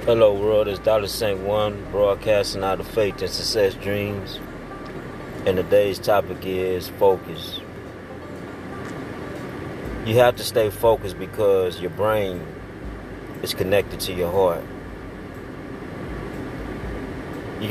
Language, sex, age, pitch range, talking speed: English, male, 30-49, 95-110 Hz, 110 wpm